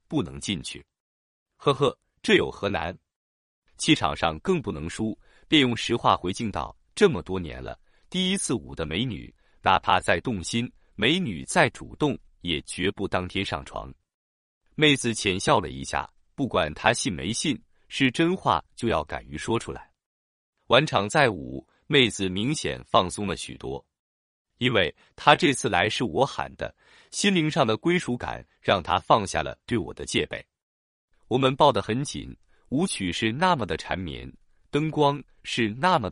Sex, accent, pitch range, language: male, native, 85-140 Hz, Chinese